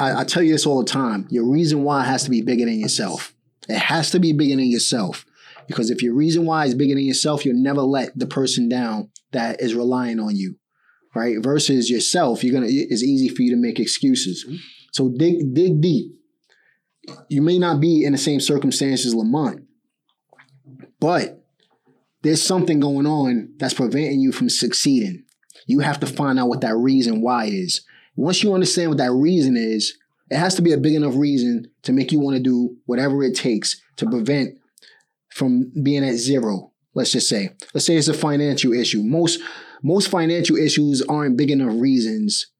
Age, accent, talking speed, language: 20-39, American, 190 wpm, English